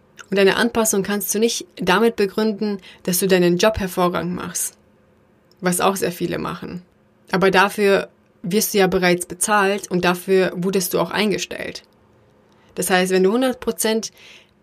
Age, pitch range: 30-49, 185-215 Hz